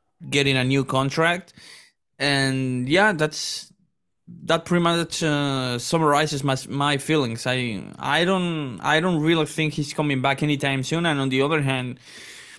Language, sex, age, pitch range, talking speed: English, male, 20-39, 115-145 Hz, 155 wpm